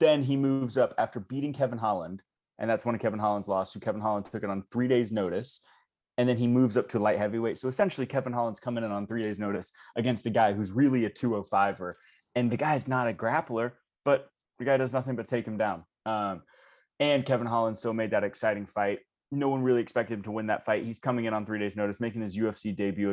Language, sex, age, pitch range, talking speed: English, male, 20-39, 100-120 Hz, 240 wpm